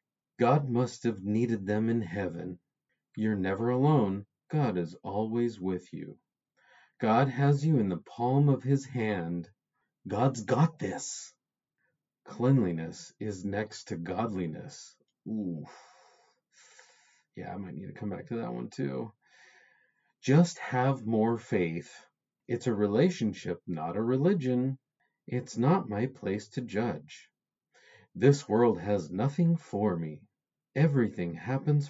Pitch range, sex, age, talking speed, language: 100-135 Hz, male, 40-59, 130 wpm, English